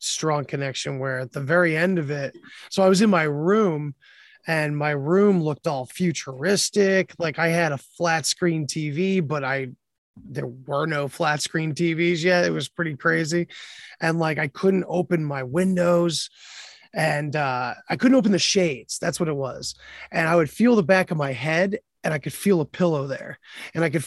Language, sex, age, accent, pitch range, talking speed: English, male, 20-39, American, 150-185 Hz, 195 wpm